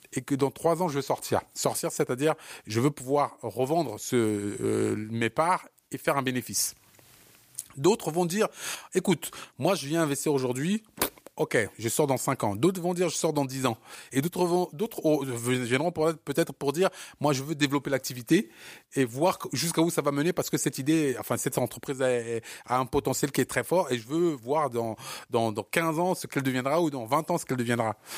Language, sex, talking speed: French, male, 200 wpm